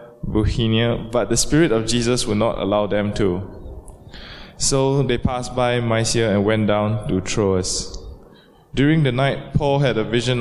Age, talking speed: 20-39, 155 wpm